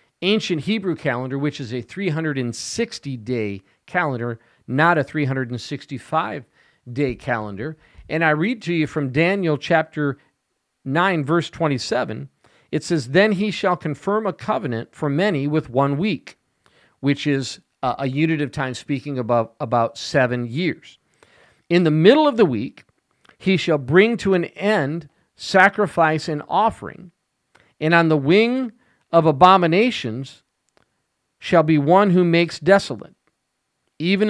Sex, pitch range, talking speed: male, 135-180 Hz, 130 wpm